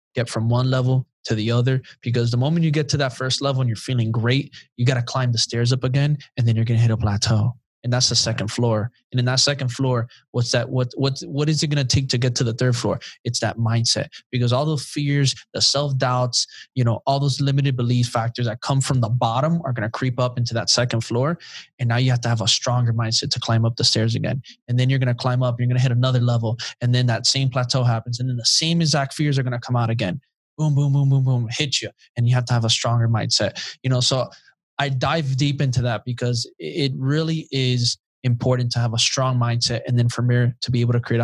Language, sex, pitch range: English, male, 120-135 Hz